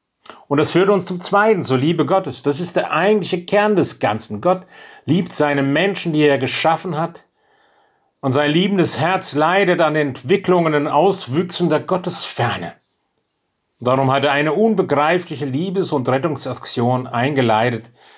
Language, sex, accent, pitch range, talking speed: German, male, German, 125-175 Hz, 160 wpm